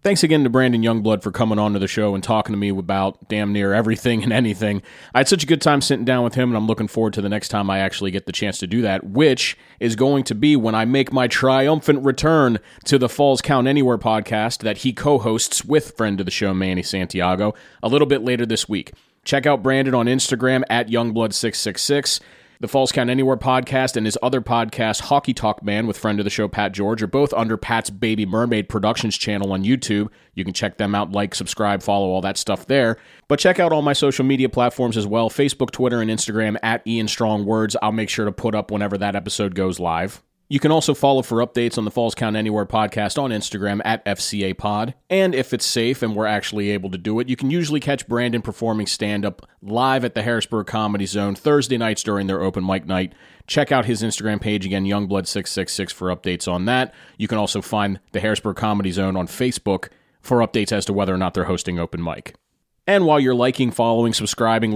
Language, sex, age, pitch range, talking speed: English, male, 30-49, 105-125 Hz, 225 wpm